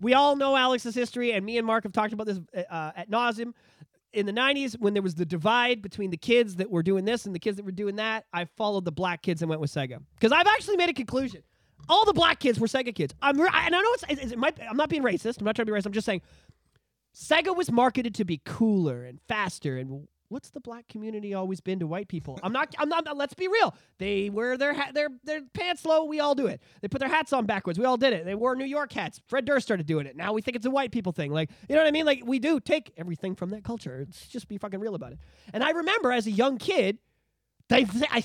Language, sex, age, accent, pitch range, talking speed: English, male, 30-49, American, 175-265 Hz, 275 wpm